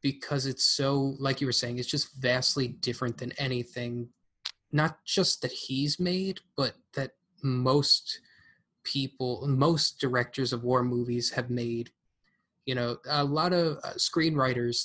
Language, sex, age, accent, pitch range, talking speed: English, male, 20-39, American, 120-145 Hz, 140 wpm